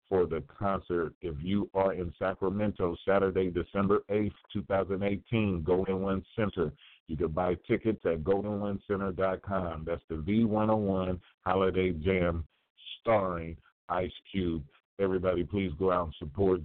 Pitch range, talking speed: 85-100 Hz, 125 wpm